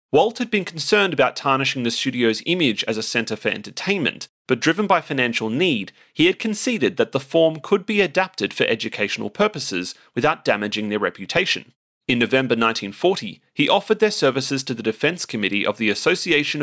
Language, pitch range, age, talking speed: English, 115-170 Hz, 30-49, 175 wpm